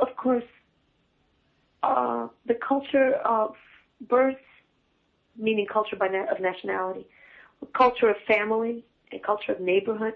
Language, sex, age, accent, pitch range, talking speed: English, female, 40-59, American, 200-255 Hz, 125 wpm